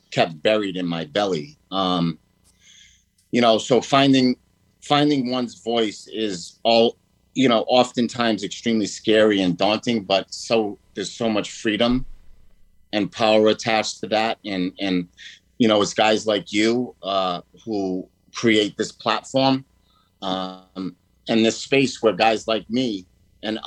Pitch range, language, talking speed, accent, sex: 90-110 Hz, English, 140 wpm, American, male